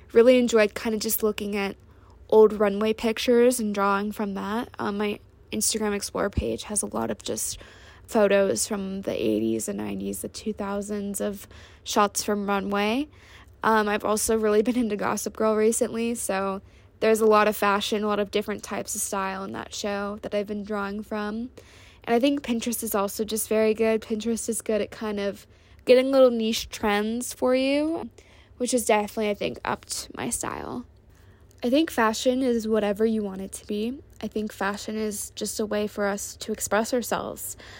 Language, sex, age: English, female, 10-29